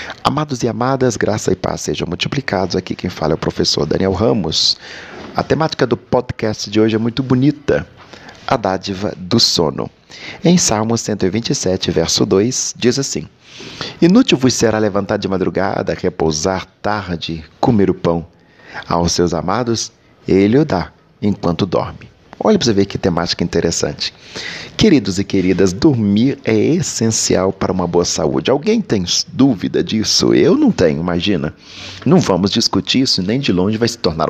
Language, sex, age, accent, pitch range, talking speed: Portuguese, male, 40-59, Brazilian, 95-125 Hz, 160 wpm